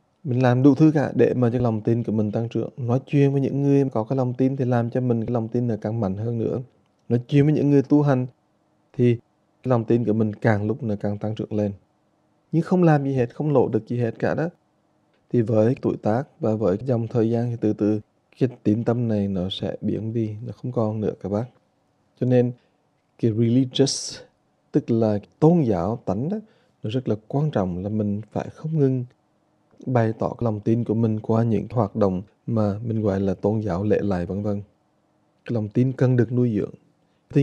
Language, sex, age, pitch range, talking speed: English, male, 20-39, 105-130 Hz, 225 wpm